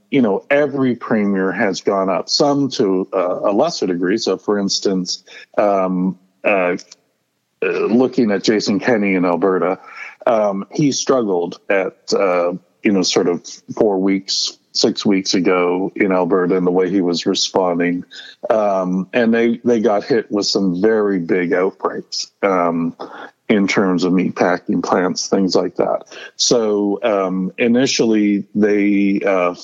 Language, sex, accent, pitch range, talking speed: English, male, American, 90-105 Hz, 145 wpm